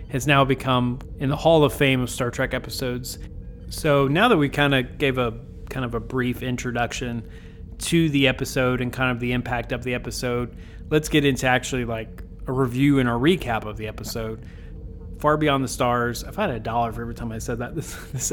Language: English